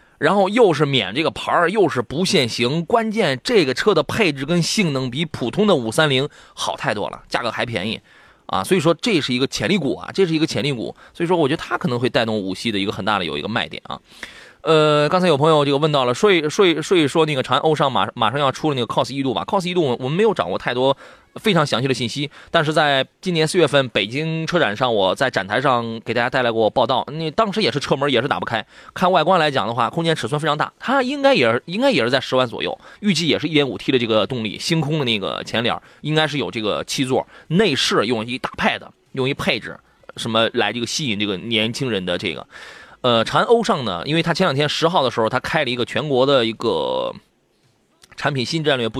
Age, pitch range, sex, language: 20-39, 125-165 Hz, male, Chinese